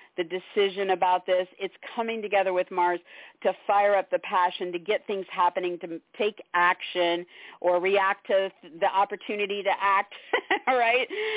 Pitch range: 180-210 Hz